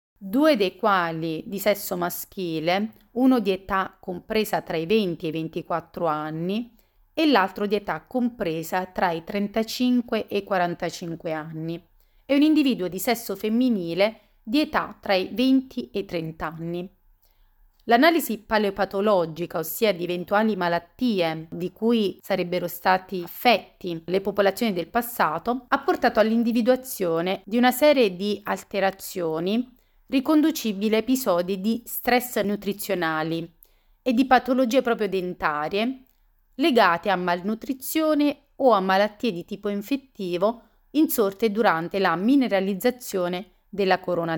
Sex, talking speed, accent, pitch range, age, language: female, 125 wpm, native, 175-240 Hz, 30-49, Italian